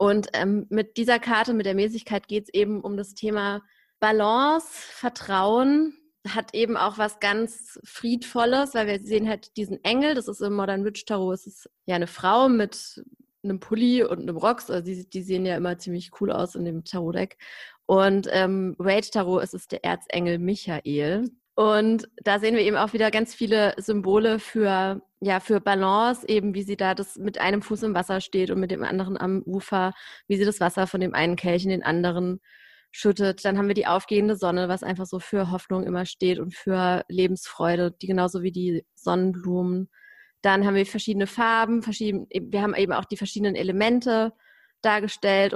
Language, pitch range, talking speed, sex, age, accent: German, 185-220 Hz, 190 wpm, female, 30-49, German